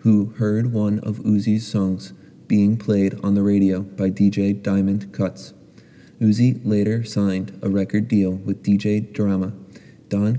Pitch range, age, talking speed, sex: 100-110 Hz, 30-49, 145 wpm, male